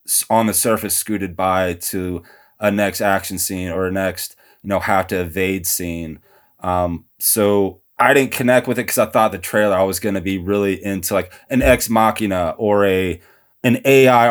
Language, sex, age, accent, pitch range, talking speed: English, male, 20-39, American, 95-110 Hz, 195 wpm